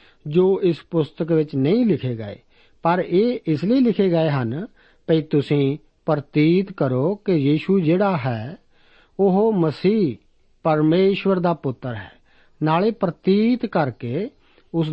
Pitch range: 145-195 Hz